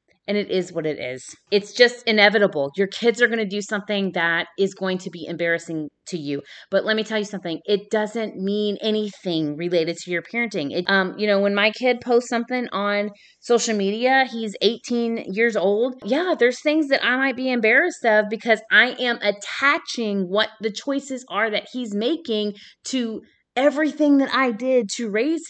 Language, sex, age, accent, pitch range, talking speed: English, female, 30-49, American, 205-290 Hz, 190 wpm